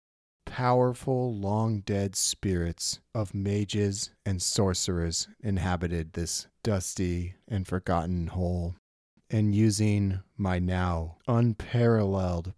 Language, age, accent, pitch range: English, 30-49, American, 85-105 Hz